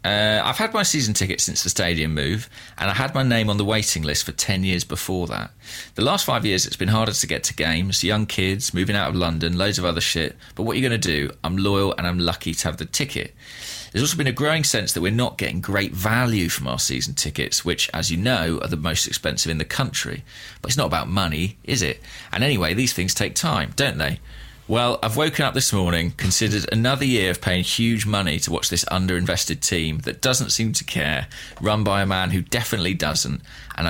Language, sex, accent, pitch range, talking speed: English, male, British, 90-115 Hz, 235 wpm